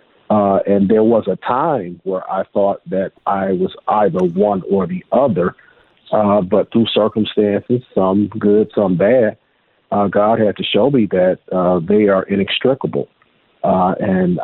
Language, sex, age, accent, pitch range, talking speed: English, male, 50-69, American, 100-115 Hz, 160 wpm